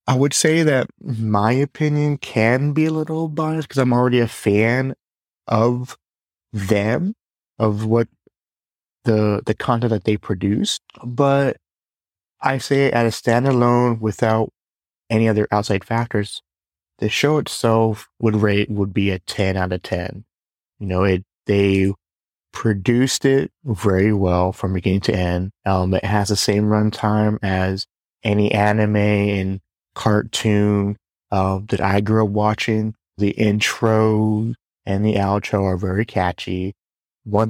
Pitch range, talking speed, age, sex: 95-115 Hz, 140 wpm, 30-49, male